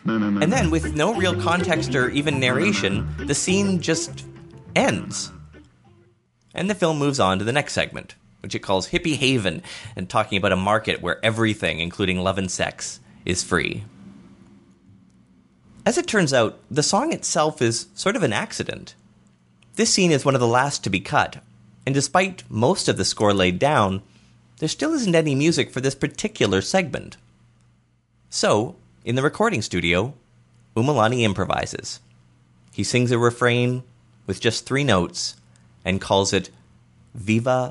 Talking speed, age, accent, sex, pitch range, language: 155 wpm, 30-49, American, male, 90-145 Hz, English